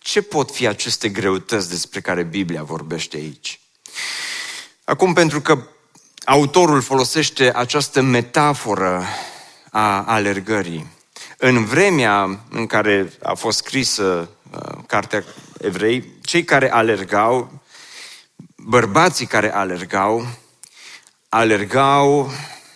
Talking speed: 90 wpm